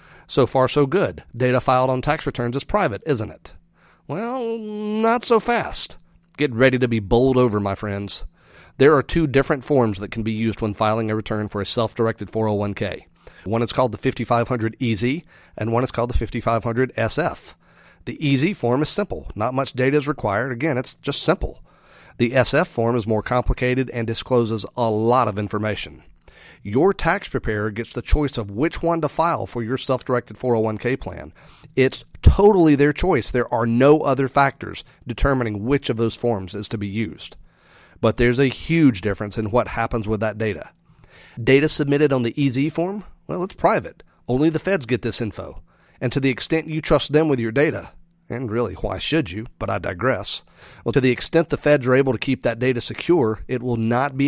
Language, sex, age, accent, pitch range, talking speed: English, male, 40-59, American, 110-145 Hz, 190 wpm